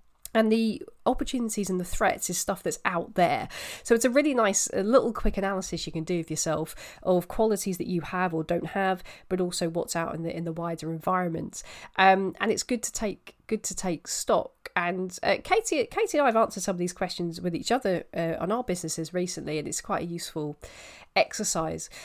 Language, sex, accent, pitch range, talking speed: English, female, British, 170-220 Hz, 210 wpm